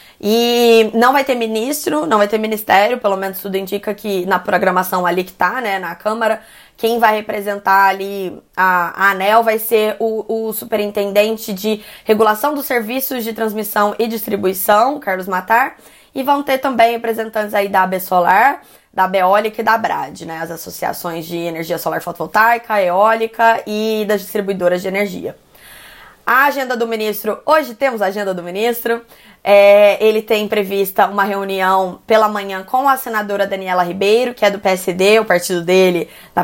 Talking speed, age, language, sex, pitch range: 170 wpm, 20-39, Portuguese, female, 190-225 Hz